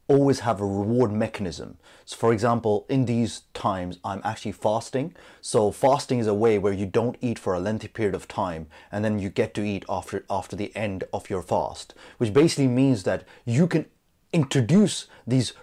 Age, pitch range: 30-49, 100-125 Hz